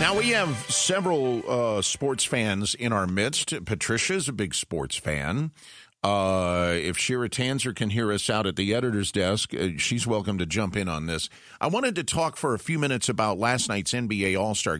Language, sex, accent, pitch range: English, male, American, 100-135 Hz